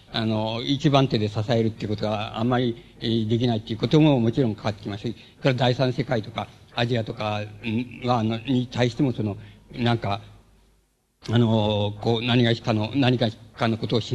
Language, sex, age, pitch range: Japanese, male, 50-69, 115-145 Hz